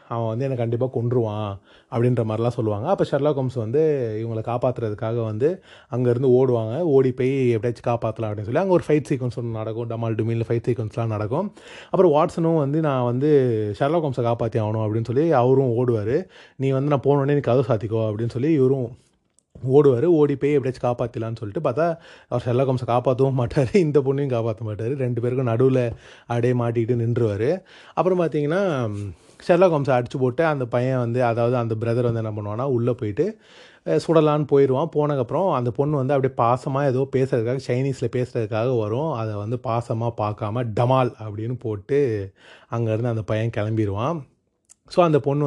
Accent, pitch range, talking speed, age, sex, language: native, 115-140 Hz, 160 wpm, 30-49, male, Tamil